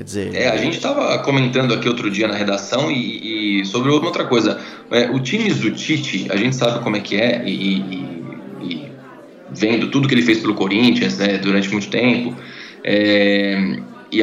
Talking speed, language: 175 wpm, Portuguese